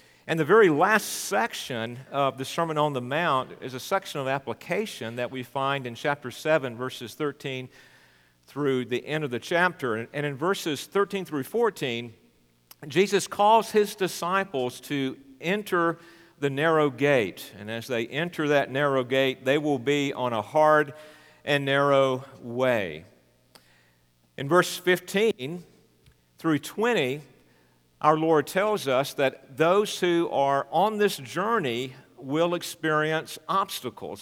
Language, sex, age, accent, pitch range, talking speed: English, male, 50-69, American, 125-160 Hz, 140 wpm